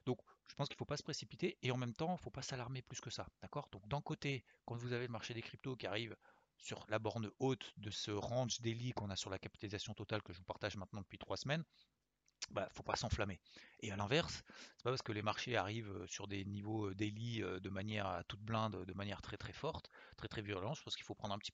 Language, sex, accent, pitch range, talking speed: French, male, French, 100-125 Hz, 265 wpm